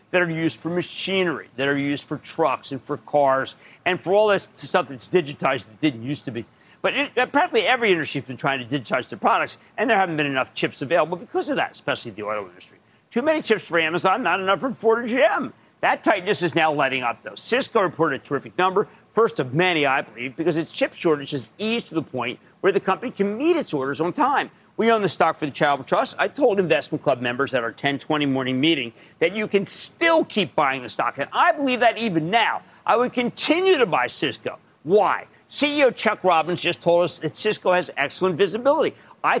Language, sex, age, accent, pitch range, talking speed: English, male, 50-69, American, 145-215 Hz, 225 wpm